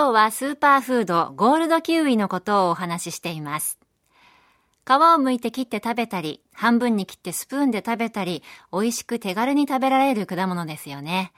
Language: Japanese